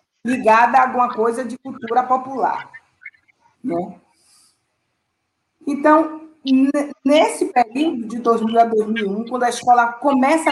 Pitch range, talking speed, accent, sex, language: 225-285 Hz, 110 wpm, Brazilian, female, Portuguese